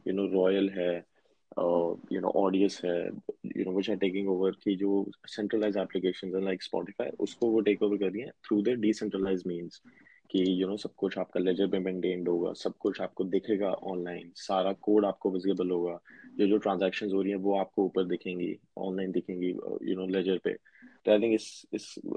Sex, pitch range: male, 95-100 Hz